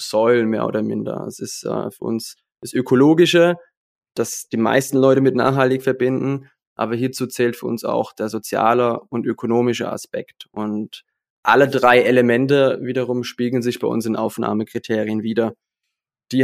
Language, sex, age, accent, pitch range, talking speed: German, male, 20-39, German, 110-125 Hz, 155 wpm